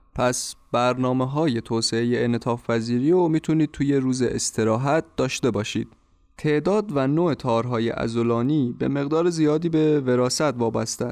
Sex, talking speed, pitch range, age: male, 125 wpm, 115-150 Hz, 30-49